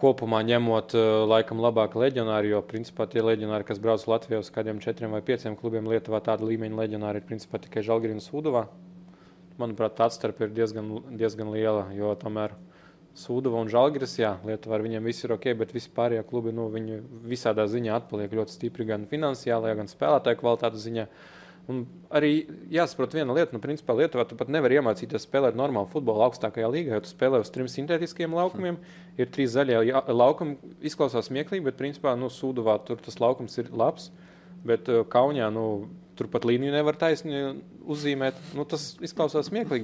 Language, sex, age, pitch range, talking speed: English, male, 20-39, 110-135 Hz, 170 wpm